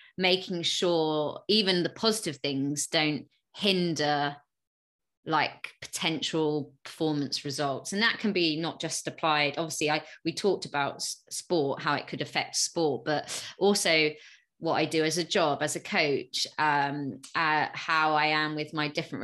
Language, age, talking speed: English, 20-39, 155 wpm